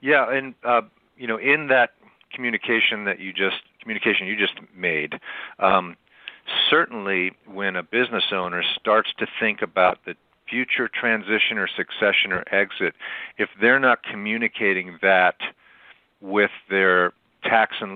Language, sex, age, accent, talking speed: English, male, 50-69, American, 135 wpm